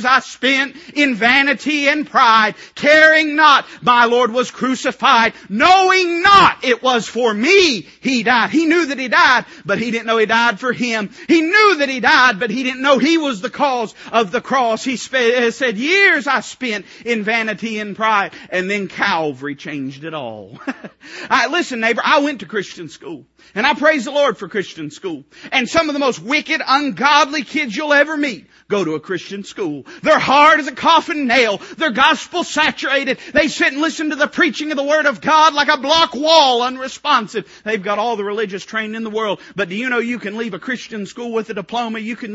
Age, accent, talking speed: 40-59, American, 205 wpm